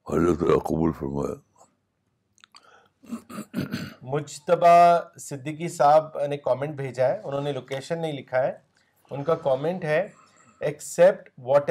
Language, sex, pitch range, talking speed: Urdu, male, 130-170 Hz, 100 wpm